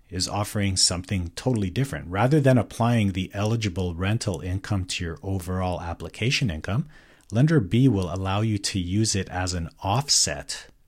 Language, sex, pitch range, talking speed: English, male, 90-115 Hz, 155 wpm